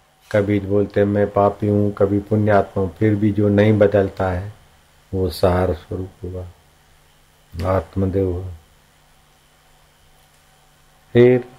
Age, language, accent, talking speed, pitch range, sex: 50-69, Hindi, native, 105 wpm, 75-105 Hz, male